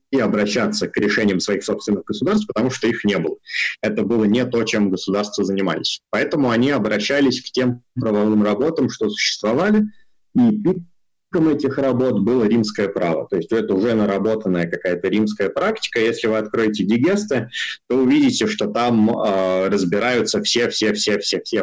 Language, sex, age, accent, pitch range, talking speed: Russian, male, 20-39, native, 105-130 Hz, 145 wpm